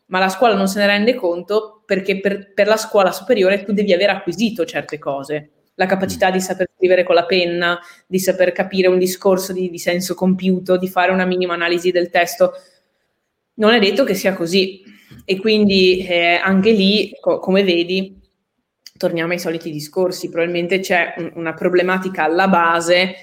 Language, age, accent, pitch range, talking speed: Italian, 20-39, native, 170-195 Hz, 175 wpm